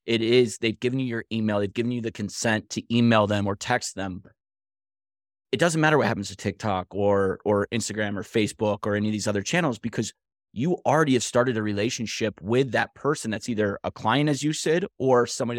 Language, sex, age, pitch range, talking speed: English, male, 30-49, 100-125 Hz, 210 wpm